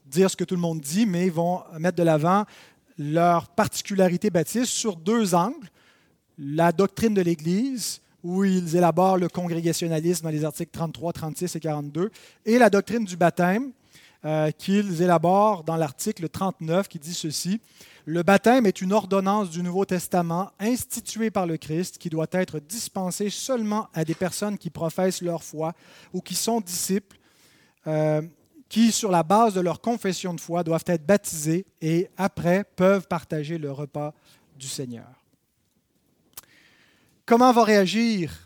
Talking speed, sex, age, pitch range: 160 wpm, male, 30-49, 160-195 Hz